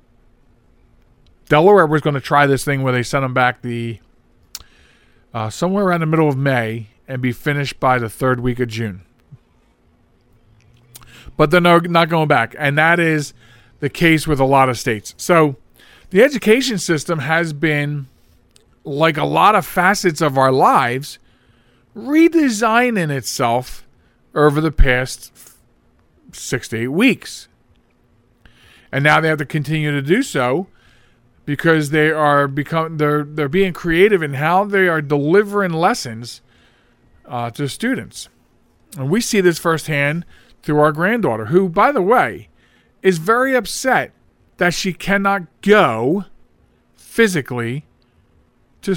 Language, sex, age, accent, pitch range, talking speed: English, male, 40-59, American, 130-175 Hz, 140 wpm